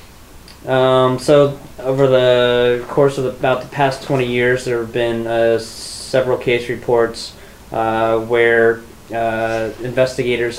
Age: 20-39